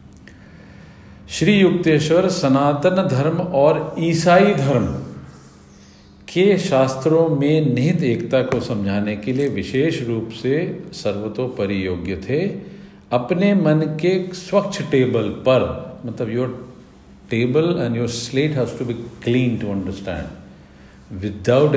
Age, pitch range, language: 50-69, 105-155 Hz, Hindi